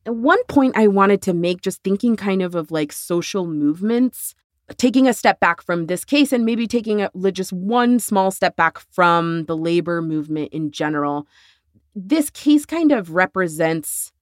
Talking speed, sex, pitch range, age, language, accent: 170 wpm, female, 165-215 Hz, 30-49, English, American